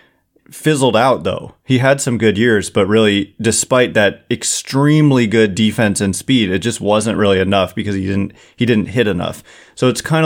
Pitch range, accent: 105-125 Hz, American